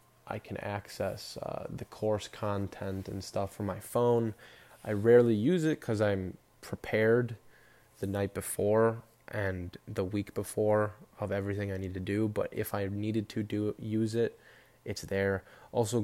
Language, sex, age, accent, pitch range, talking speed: English, male, 20-39, American, 100-110 Hz, 165 wpm